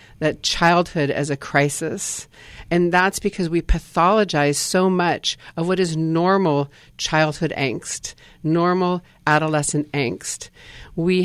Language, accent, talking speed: English, American, 115 wpm